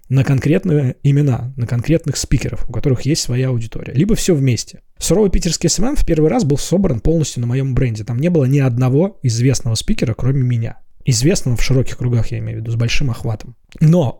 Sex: male